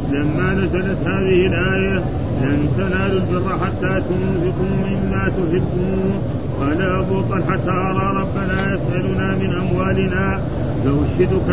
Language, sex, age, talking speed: Arabic, male, 40-59, 105 wpm